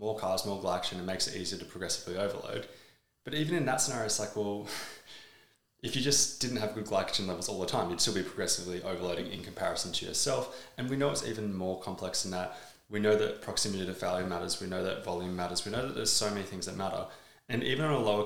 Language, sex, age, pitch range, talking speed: English, male, 20-39, 90-125 Hz, 245 wpm